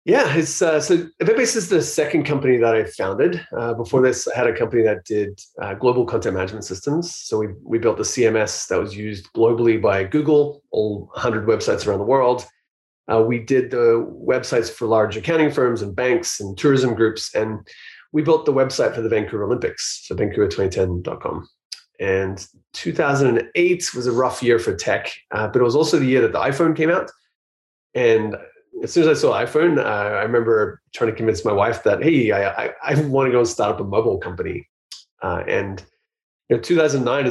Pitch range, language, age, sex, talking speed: 110-180 Hz, English, 30-49, male, 200 wpm